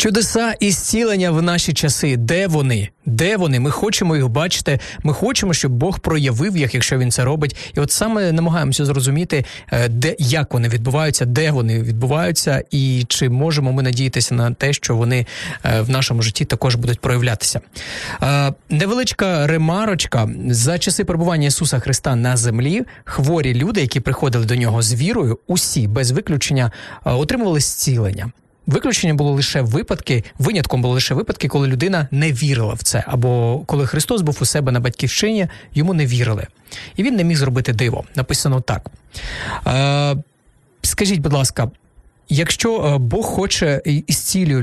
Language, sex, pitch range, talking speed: Ukrainian, male, 120-160 Hz, 155 wpm